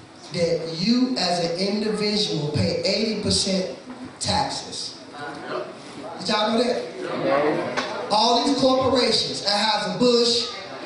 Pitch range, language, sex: 205-260 Hz, English, male